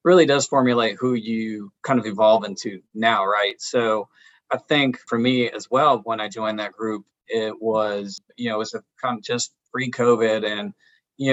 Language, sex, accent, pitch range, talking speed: English, male, American, 110-125 Hz, 195 wpm